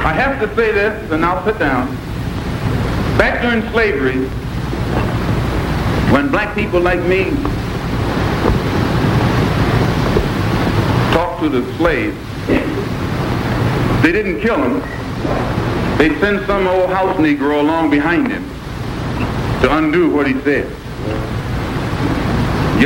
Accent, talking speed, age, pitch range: American, 105 wpm, 60-79, 145-210 Hz